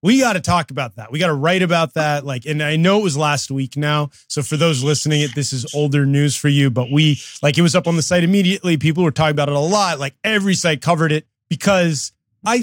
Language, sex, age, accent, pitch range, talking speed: English, male, 30-49, American, 130-175 Hz, 265 wpm